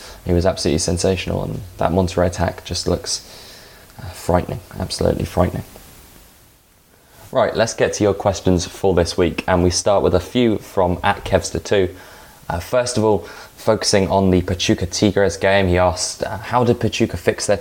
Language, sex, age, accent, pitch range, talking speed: English, male, 20-39, British, 90-100 Hz, 165 wpm